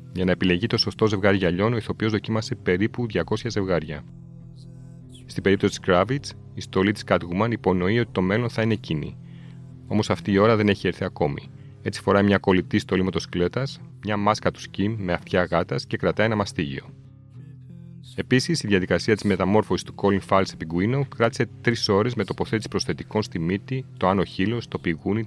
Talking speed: 175 wpm